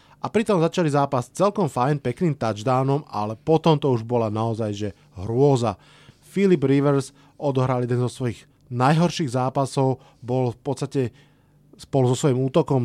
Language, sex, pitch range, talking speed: Slovak, male, 125-150 Hz, 145 wpm